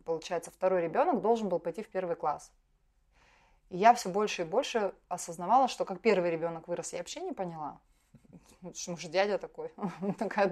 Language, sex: Russian, female